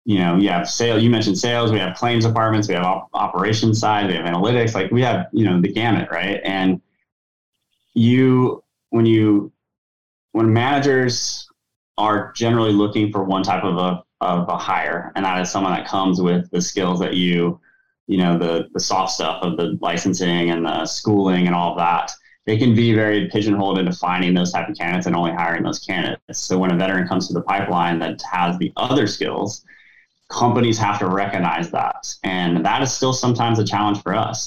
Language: English